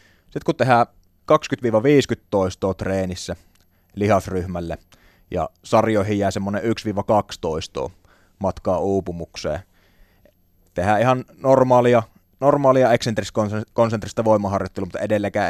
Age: 20-39